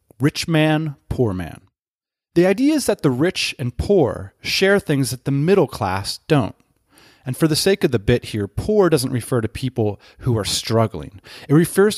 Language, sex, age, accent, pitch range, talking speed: English, male, 30-49, American, 105-155 Hz, 185 wpm